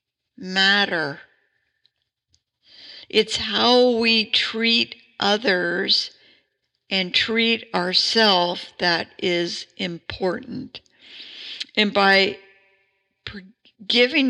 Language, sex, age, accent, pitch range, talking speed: English, female, 60-79, American, 185-220 Hz, 65 wpm